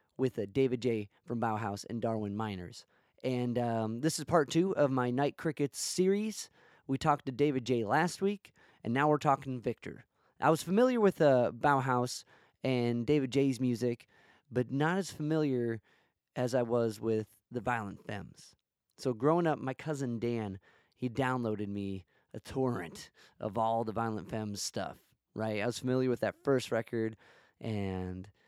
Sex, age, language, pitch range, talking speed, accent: male, 20-39, English, 115-145 Hz, 165 wpm, American